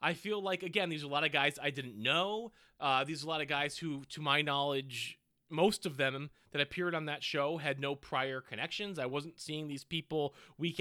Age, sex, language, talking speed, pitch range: 30-49, male, English, 235 wpm, 145-195 Hz